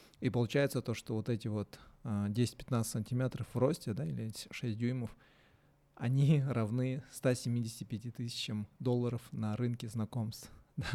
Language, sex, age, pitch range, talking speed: Russian, male, 20-39, 110-125 Hz, 135 wpm